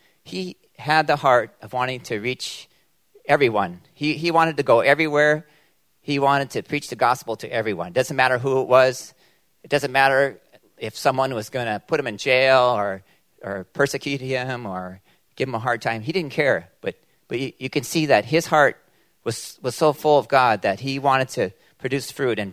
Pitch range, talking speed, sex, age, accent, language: 120-150 Hz, 200 wpm, male, 40-59, American, English